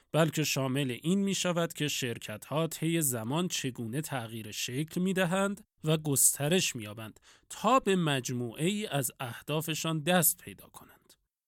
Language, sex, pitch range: Persian, male, 130-170 Hz